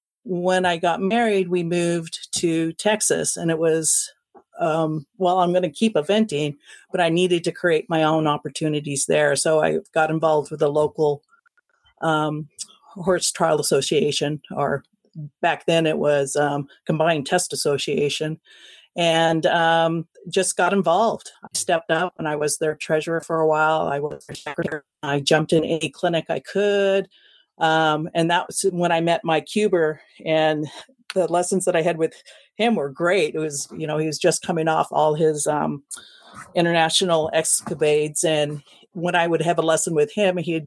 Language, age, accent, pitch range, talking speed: English, 40-59, American, 155-190 Hz, 170 wpm